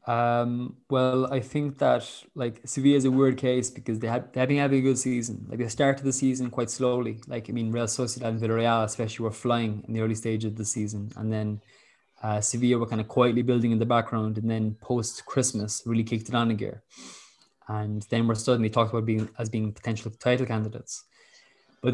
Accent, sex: Irish, male